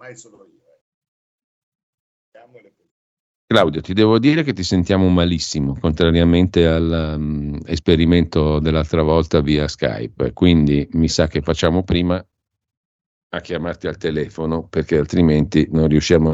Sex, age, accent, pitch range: male, 50-69, native, 75-90 Hz